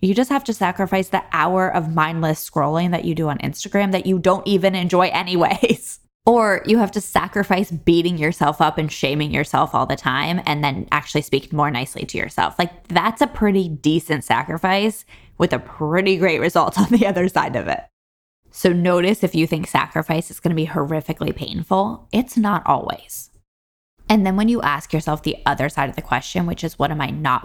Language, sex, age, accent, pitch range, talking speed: English, female, 20-39, American, 150-190 Hz, 200 wpm